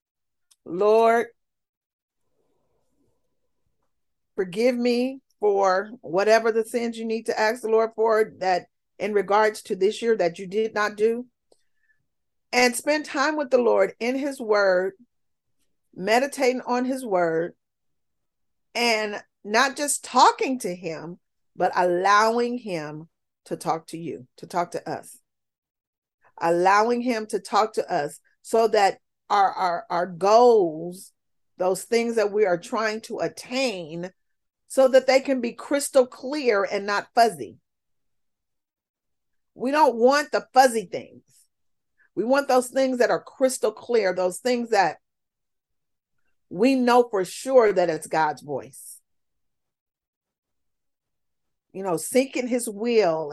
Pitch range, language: 185-250 Hz, English